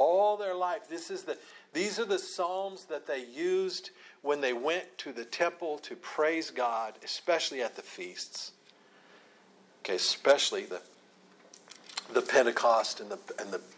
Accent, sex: American, male